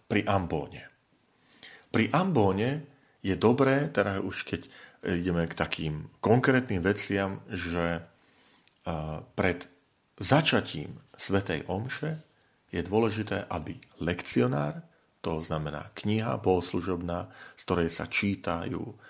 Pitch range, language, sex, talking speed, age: 85-115 Hz, Slovak, male, 95 wpm, 40-59